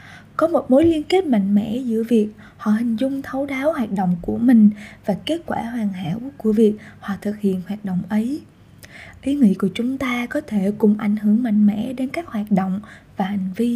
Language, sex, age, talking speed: Vietnamese, female, 20-39, 220 wpm